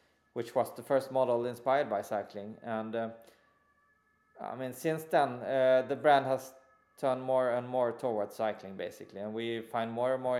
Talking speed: 180 wpm